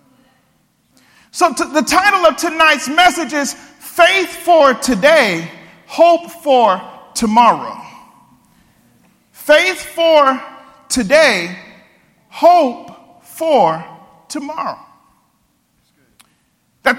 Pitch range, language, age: 230-315 Hz, English, 40-59